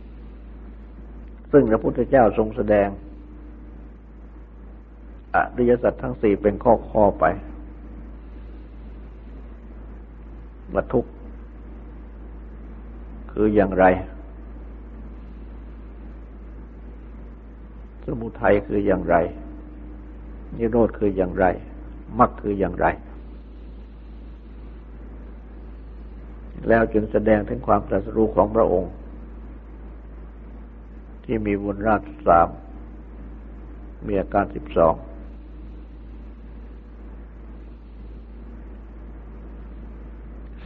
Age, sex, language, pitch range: 60-79, male, Thai, 65-100 Hz